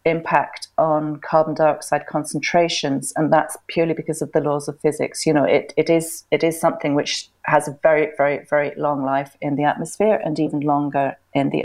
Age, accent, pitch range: 40-59, British, 155-185 Hz